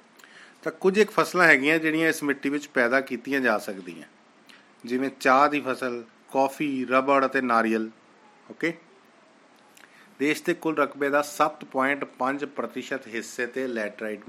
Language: Punjabi